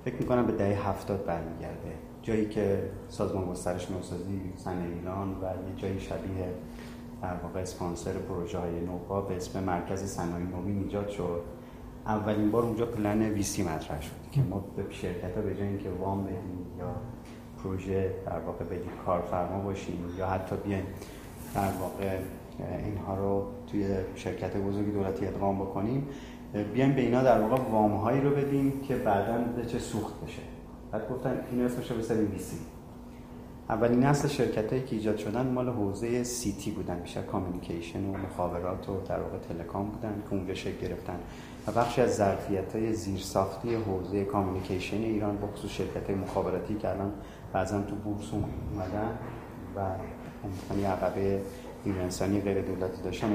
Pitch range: 90-110 Hz